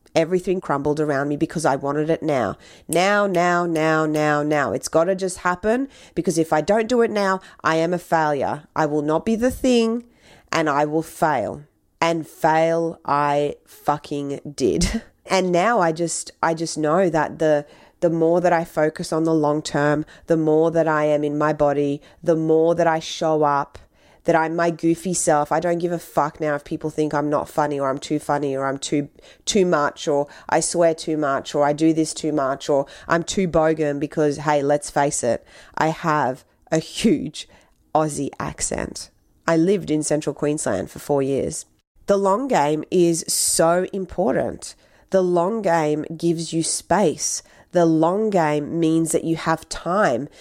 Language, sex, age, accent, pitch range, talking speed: English, female, 30-49, Australian, 150-170 Hz, 185 wpm